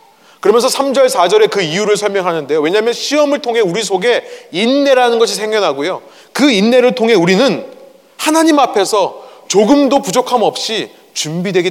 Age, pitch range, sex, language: 30-49, 170-270 Hz, male, Korean